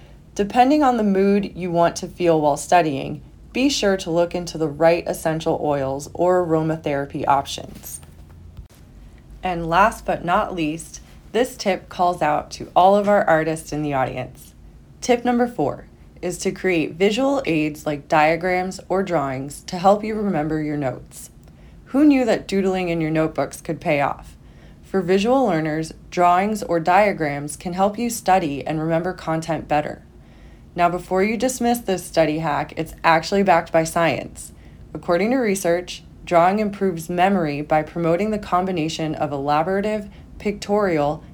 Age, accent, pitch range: 20-39, American, 150-195 Hz